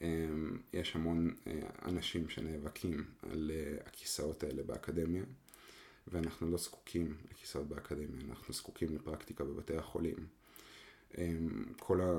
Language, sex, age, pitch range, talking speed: Hebrew, male, 30-49, 75-90 Hz, 95 wpm